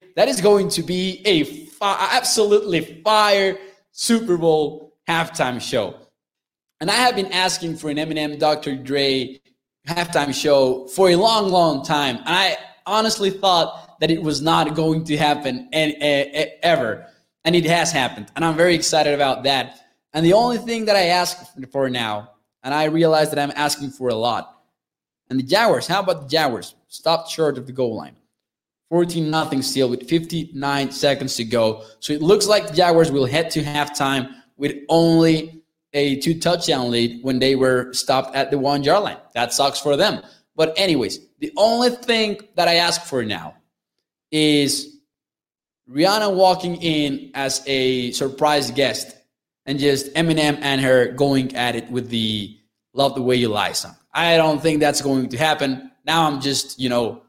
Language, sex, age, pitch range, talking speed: English, male, 20-39, 135-170 Hz, 170 wpm